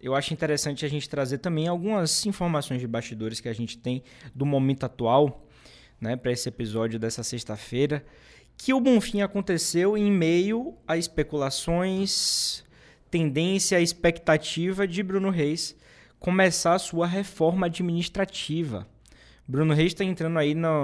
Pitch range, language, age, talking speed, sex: 130-175 Hz, Portuguese, 20-39, 140 wpm, male